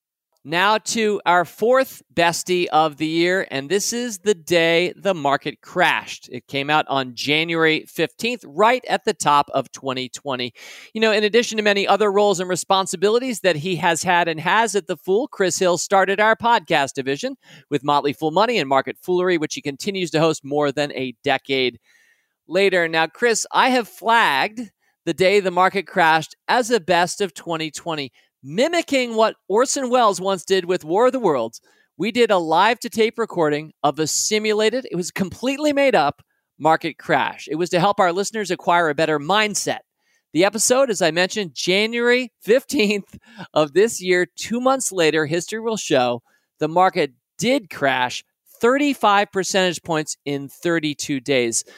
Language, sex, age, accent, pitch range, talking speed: English, male, 40-59, American, 155-215 Hz, 170 wpm